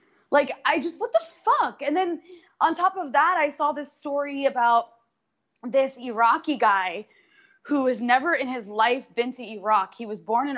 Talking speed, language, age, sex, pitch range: 185 wpm, English, 20-39, female, 230-295 Hz